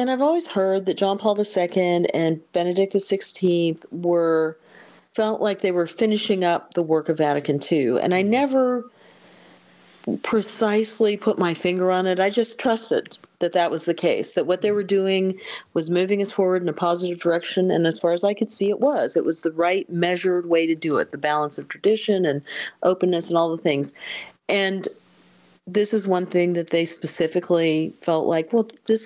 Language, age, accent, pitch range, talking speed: English, 40-59, American, 165-205 Hz, 190 wpm